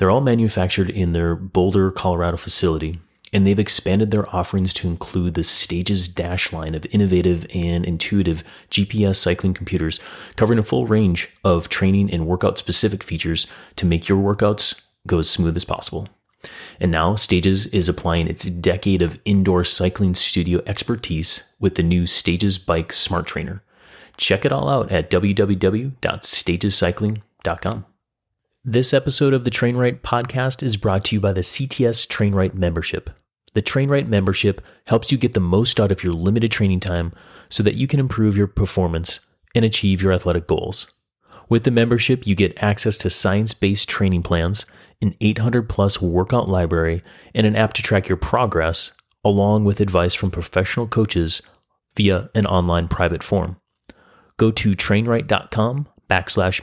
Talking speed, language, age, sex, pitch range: 155 wpm, English, 30-49, male, 90-110 Hz